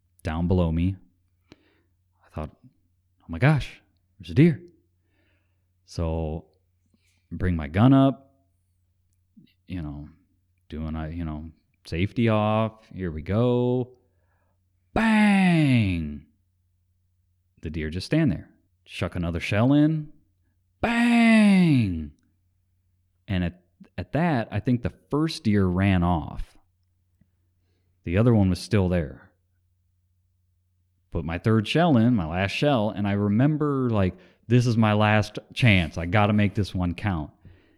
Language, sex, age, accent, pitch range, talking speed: English, male, 30-49, American, 90-105 Hz, 125 wpm